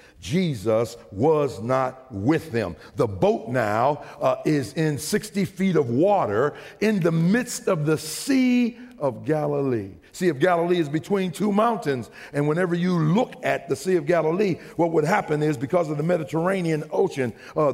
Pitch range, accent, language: 130-190 Hz, American, English